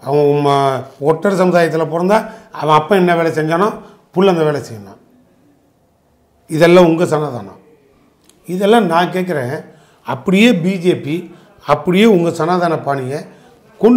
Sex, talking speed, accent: male, 110 wpm, native